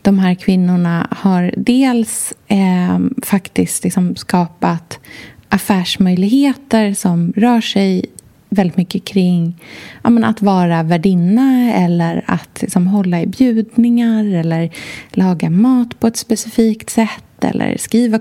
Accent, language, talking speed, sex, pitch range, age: native, Swedish, 120 wpm, female, 175-225 Hz, 20-39